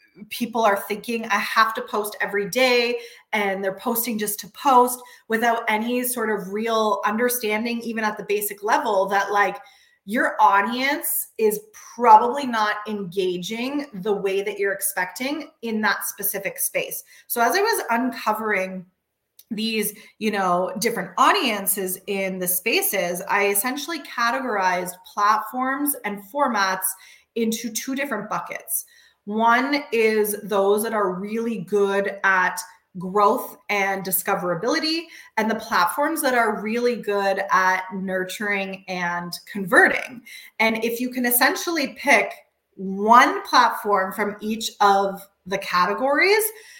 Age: 20-39